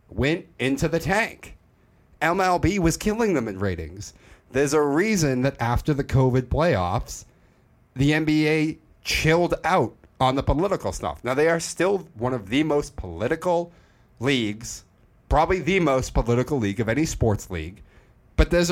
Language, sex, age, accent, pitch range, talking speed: English, male, 30-49, American, 100-135 Hz, 150 wpm